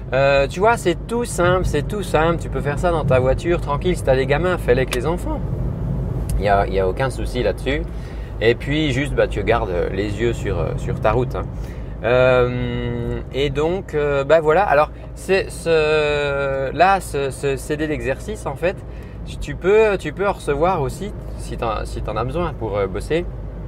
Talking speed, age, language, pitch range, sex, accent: 205 wpm, 30-49, French, 125-155 Hz, male, French